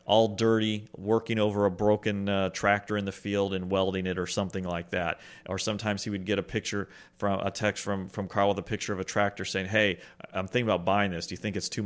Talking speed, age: 250 wpm, 30-49